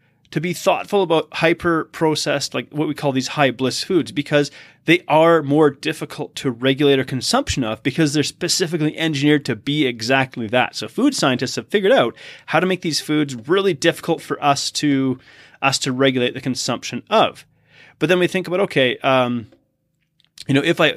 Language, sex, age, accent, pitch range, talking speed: English, male, 30-49, American, 135-165 Hz, 185 wpm